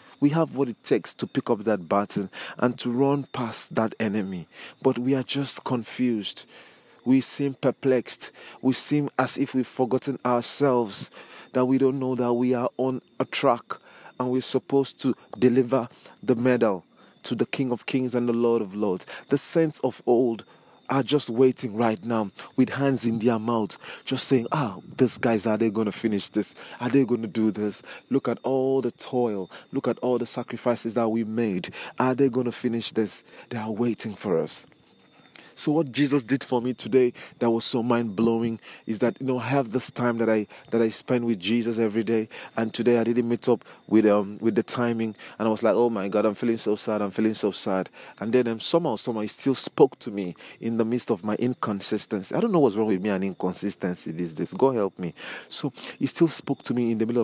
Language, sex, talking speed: English, male, 215 wpm